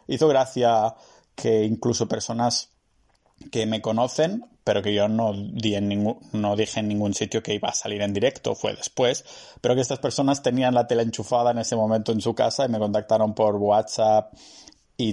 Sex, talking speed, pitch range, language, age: male, 190 wpm, 110-130 Hz, Spanish, 20-39